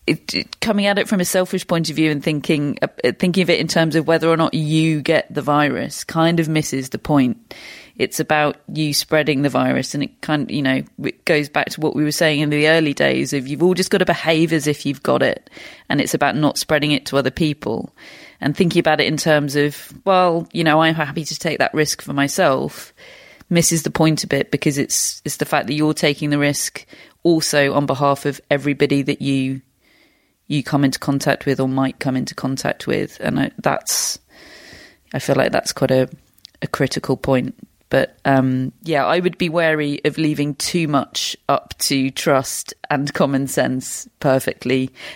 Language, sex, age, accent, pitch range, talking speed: English, female, 30-49, British, 140-175 Hz, 205 wpm